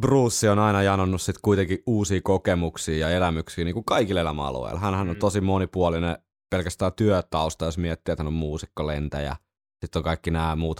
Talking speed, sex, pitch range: 170 wpm, male, 80-95 Hz